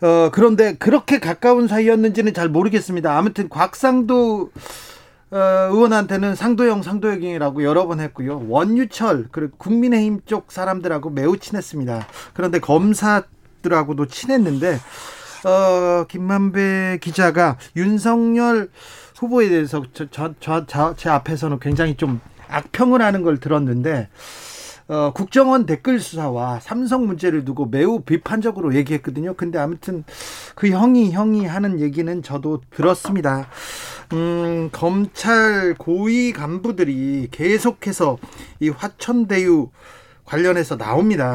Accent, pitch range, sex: native, 150-210 Hz, male